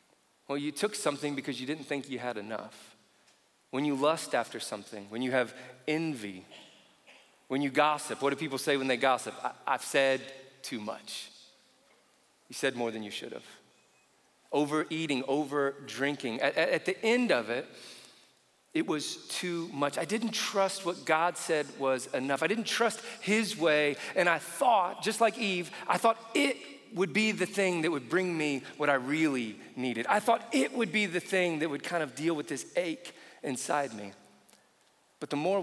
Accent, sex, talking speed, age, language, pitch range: American, male, 185 wpm, 40-59, English, 125-165 Hz